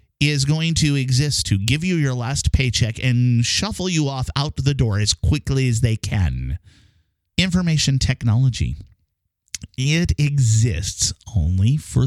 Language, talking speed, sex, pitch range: English, 140 wpm, male, 100-150 Hz